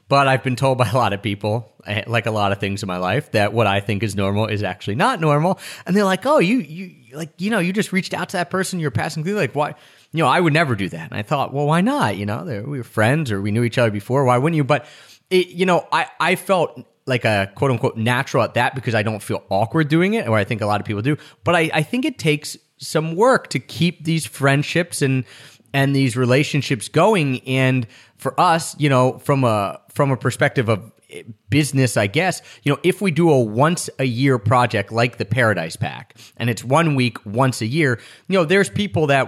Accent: American